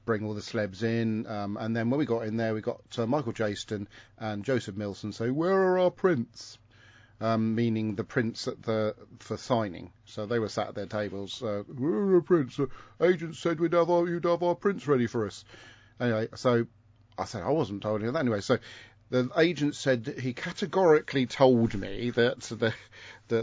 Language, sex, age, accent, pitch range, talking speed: English, male, 40-59, British, 105-125 Hz, 205 wpm